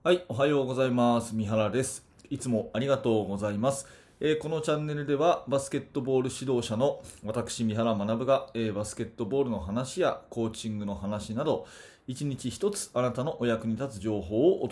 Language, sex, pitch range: Japanese, male, 105-130 Hz